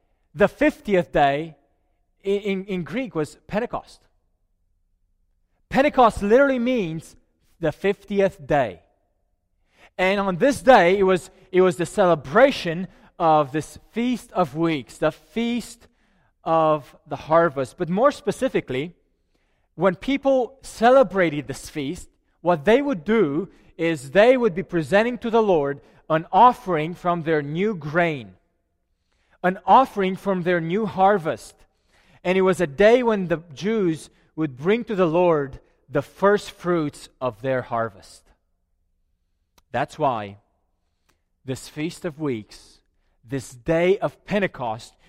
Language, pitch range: English, 130-190 Hz